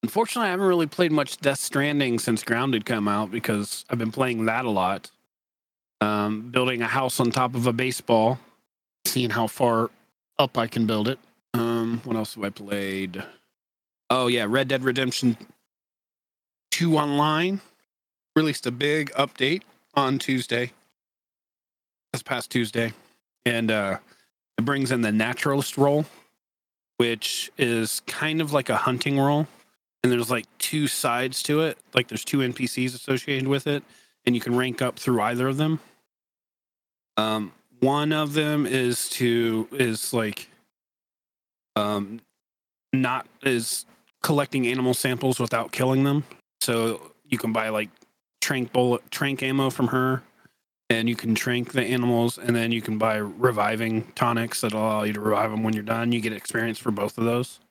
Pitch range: 115-135 Hz